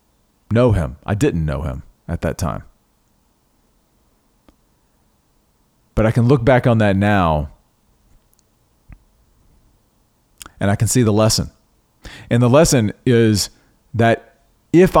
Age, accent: 40-59, American